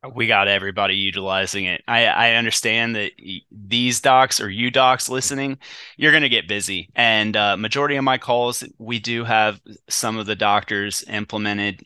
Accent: American